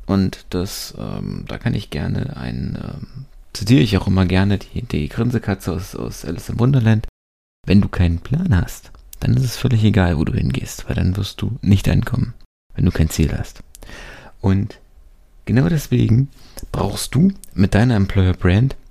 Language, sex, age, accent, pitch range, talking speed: German, male, 30-49, German, 90-120 Hz, 175 wpm